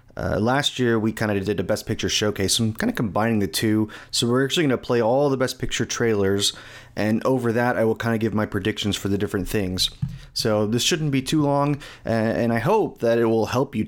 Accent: American